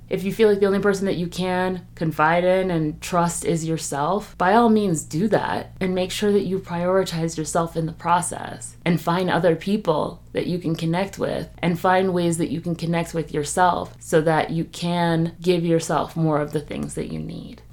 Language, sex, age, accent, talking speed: English, female, 30-49, American, 210 wpm